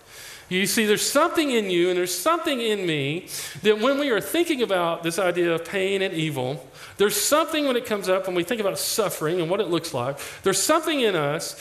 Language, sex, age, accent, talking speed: English, male, 40-59, American, 220 wpm